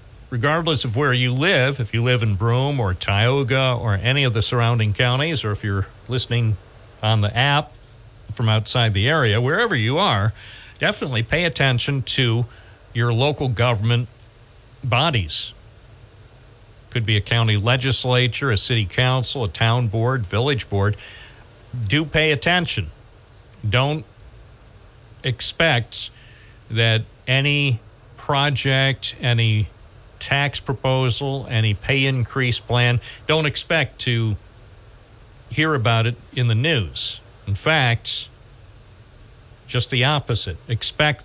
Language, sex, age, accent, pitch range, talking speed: English, male, 50-69, American, 110-130 Hz, 120 wpm